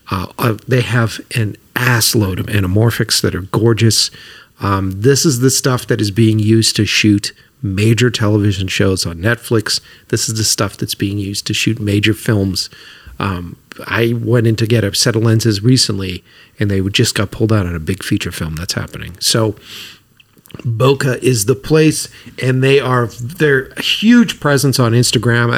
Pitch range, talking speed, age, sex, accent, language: 105-130 Hz, 175 wpm, 40-59, male, American, English